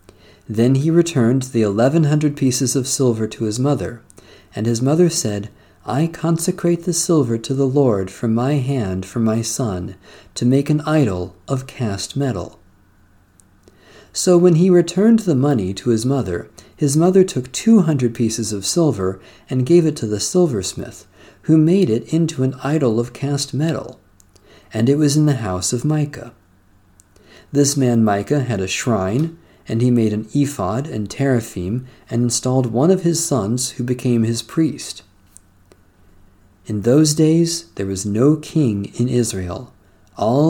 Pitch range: 100-140 Hz